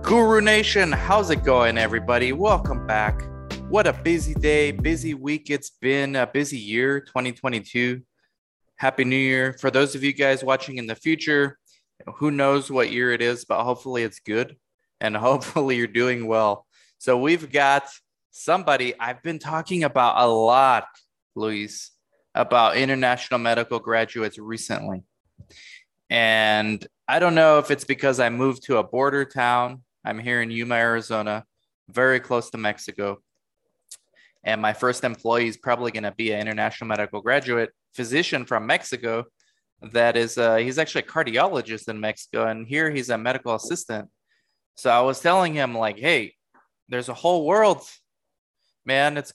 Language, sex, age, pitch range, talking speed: English, male, 20-39, 115-140 Hz, 155 wpm